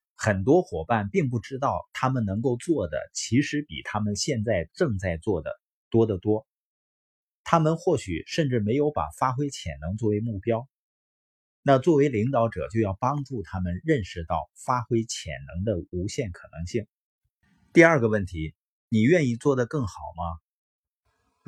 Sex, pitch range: male, 95-135 Hz